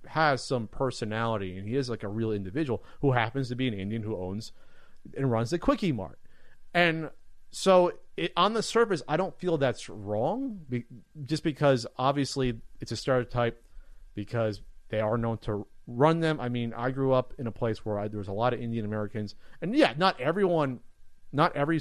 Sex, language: male, English